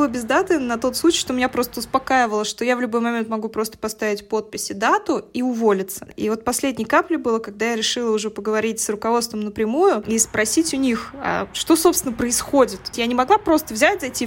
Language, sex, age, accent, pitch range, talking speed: Russian, female, 20-39, native, 215-270 Hz, 205 wpm